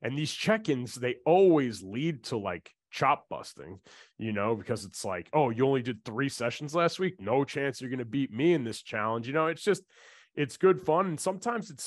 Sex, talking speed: male, 215 wpm